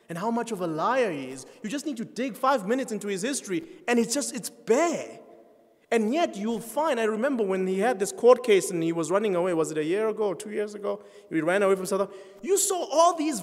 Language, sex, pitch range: English, male, 165-225 Hz